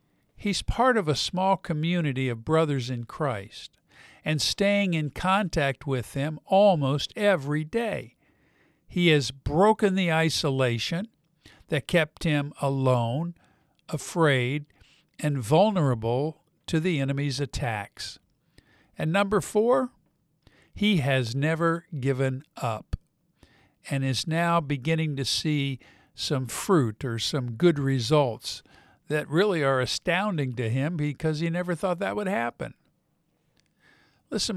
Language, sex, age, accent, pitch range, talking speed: English, male, 50-69, American, 135-180 Hz, 120 wpm